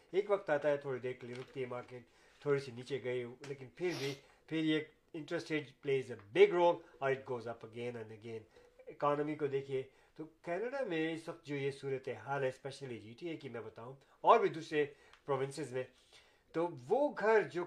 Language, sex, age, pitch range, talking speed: Urdu, male, 50-69, 130-165 Hz, 185 wpm